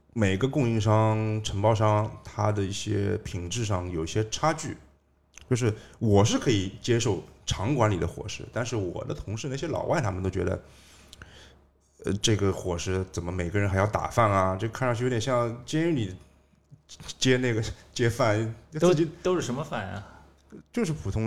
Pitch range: 90-120 Hz